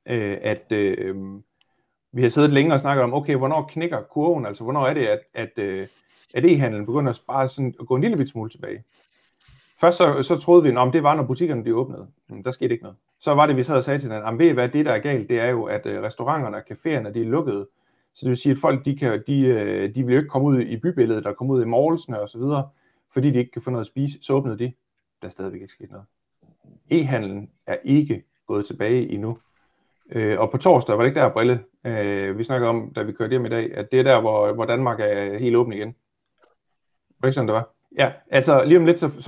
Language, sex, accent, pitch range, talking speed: Danish, male, native, 115-150 Hz, 245 wpm